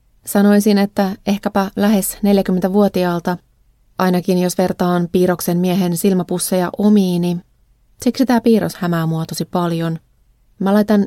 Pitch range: 170-200 Hz